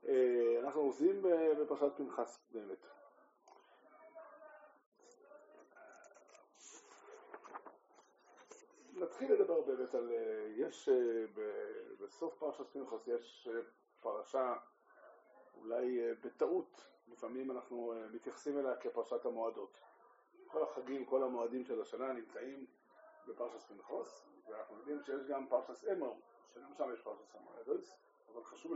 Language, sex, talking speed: Hebrew, male, 95 wpm